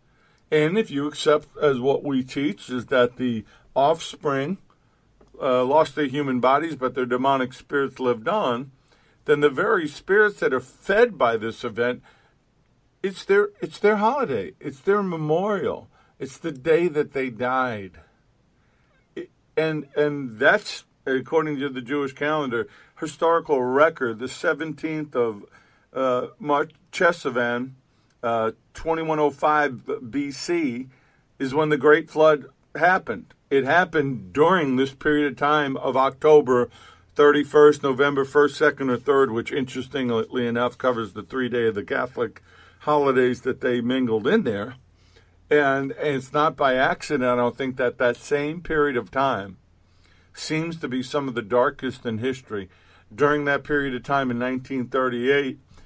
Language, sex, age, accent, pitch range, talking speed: English, male, 50-69, American, 125-150 Hz, 145 wpm